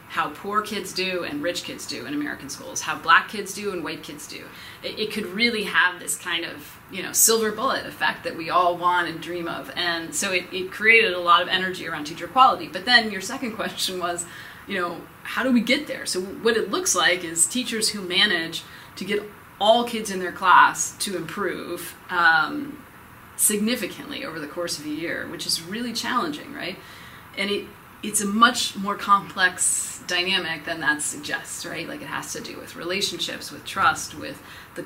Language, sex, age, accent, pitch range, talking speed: English, female, 30-49, American, 165-210 Hz, 205 wpm